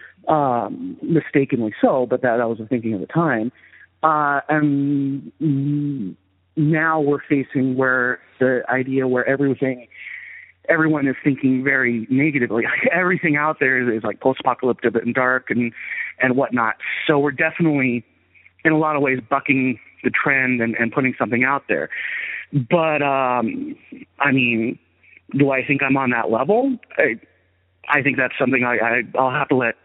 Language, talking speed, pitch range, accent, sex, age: English, 155 wpm, 125-155 Hz, American, male, 40-59